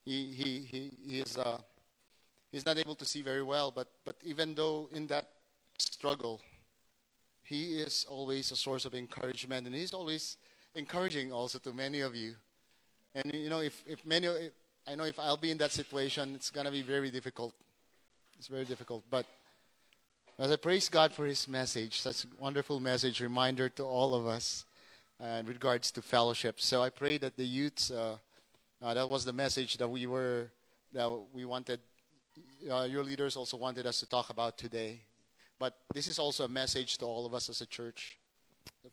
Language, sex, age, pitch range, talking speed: English, male, 30-49, 120-145 Hz, 190 wpm